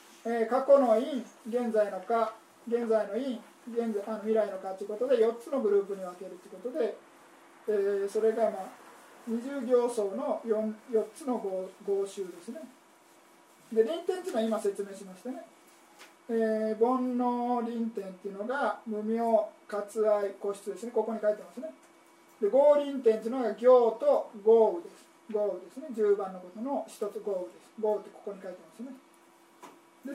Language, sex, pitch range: Japanese, male, 210-295 Hz